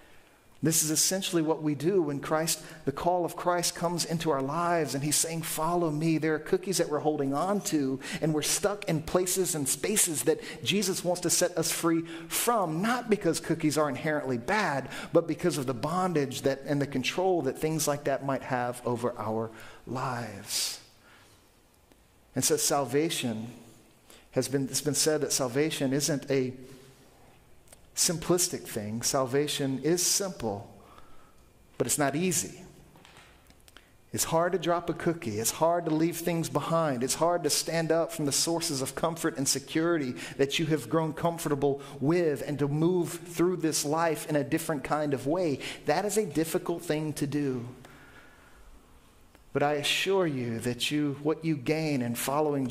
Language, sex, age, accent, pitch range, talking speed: English, male, 50-69, American, 135-165 Hz, 170 wpm